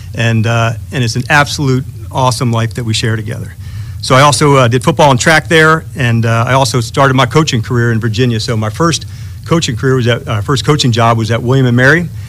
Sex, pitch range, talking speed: male, 110-135 Hz, 230 wpm